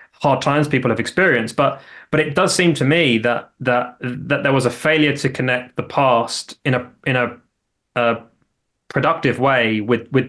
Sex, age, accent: male, 20-39, British